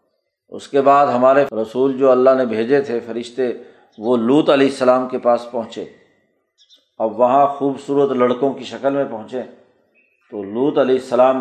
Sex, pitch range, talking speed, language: male, 125-140 Hz, 160 wpm, Urdu